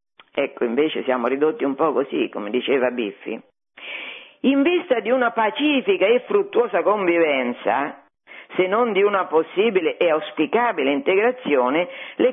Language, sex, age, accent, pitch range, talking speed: Italian, female, 50-69, native, 165-280 Hz, 130 wpm